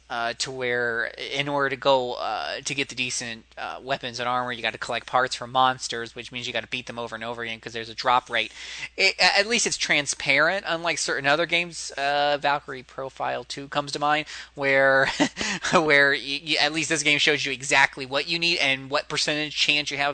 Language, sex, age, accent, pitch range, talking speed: English, male, 20-39, American, 115-140 Hz, 225 wpm